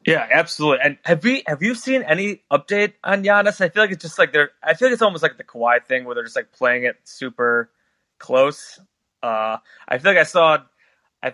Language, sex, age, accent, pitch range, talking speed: English, male, 20-39, American, 130-170 Hz, 230 wpm